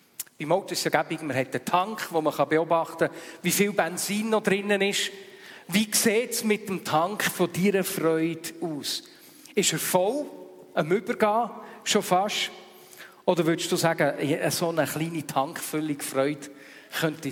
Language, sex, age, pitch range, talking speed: German, male, 50-69, 155-210 Hz, 155 wpm